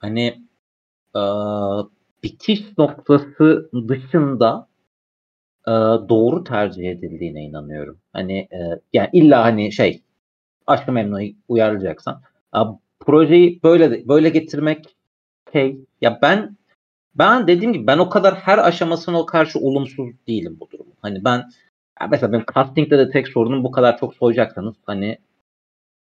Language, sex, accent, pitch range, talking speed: Turkish, male, native, 105-175 Hz, 120 wpm